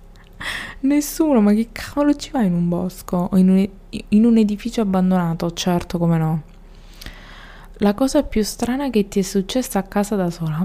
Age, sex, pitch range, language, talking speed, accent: 20-39, female, 170-210 Hz, Italian, 165 wpm, native